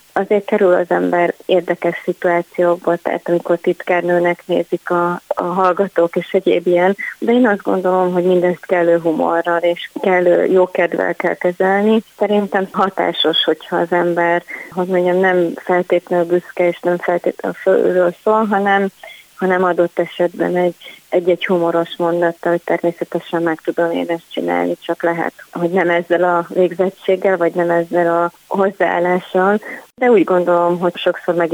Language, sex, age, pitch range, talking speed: Hungarian, female, 30-49, 170-180 Hz, 145 wpm